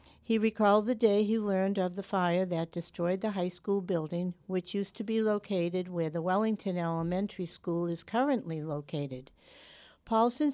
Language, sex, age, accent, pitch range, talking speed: English, female, 60-79, American, 170-205 Hz, 165 wpm